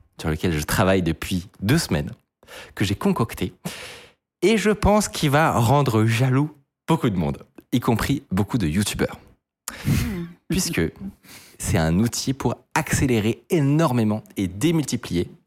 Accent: French